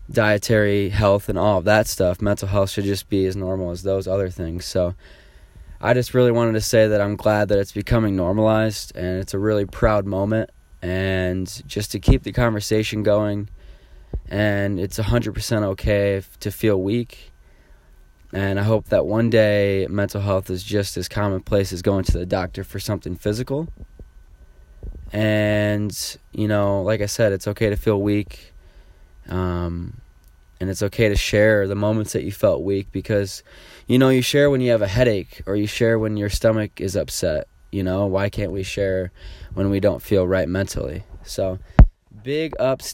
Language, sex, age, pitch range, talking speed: English, male, 20-39, 95-110 Hz, 180 wpm